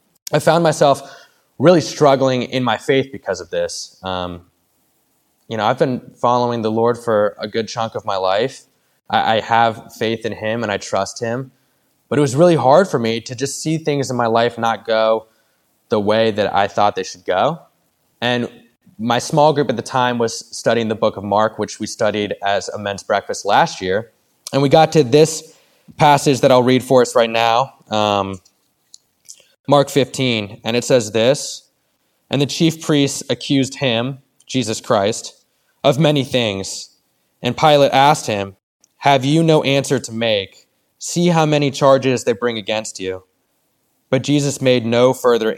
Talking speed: 180 wpm